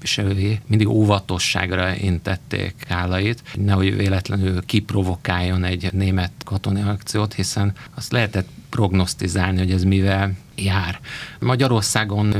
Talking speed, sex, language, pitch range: 95 wpm, male, Hungarian, 95-110 Hz